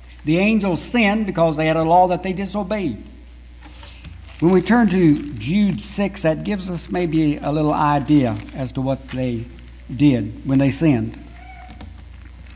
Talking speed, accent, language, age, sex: 155 wpm, American, English, 60-79, male